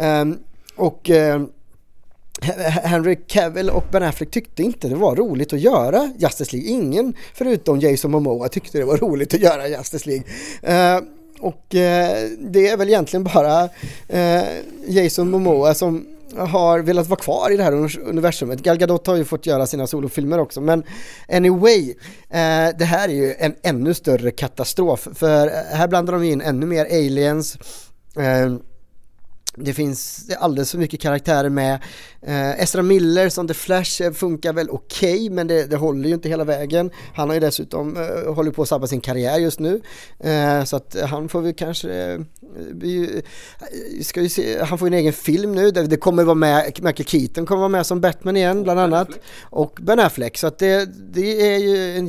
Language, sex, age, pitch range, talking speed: English, male, 30-49, 150-185 Hz, 185 wpm